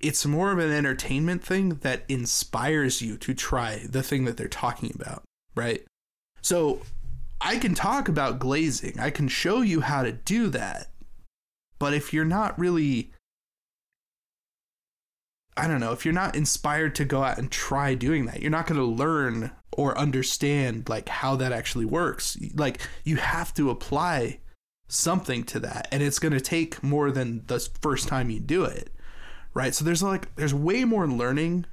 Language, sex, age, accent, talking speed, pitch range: English, male, 20-39, American, 175 wpm, 125-155 Hz